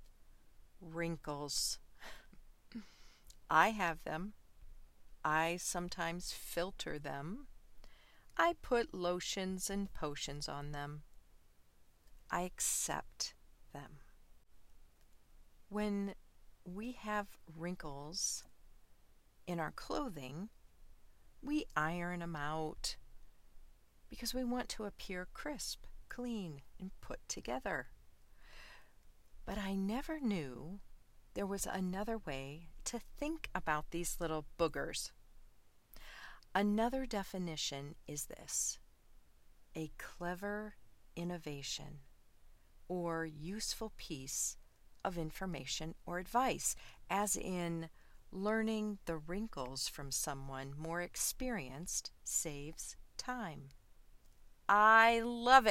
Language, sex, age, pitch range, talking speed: English, female, 40-59, 145-205 Hz, 85 wpm